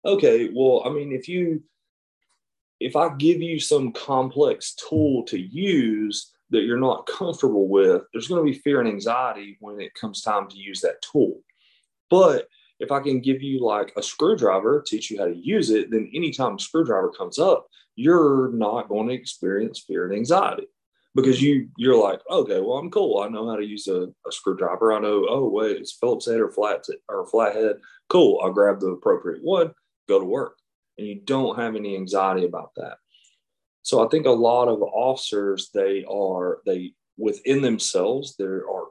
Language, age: English, 30-49